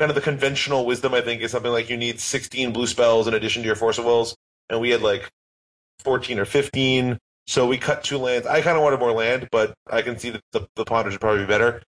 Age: 30-49